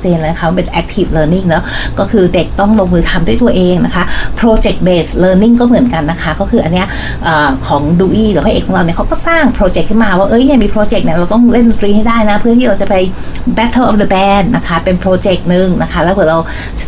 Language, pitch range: Thai, 165-215 Hz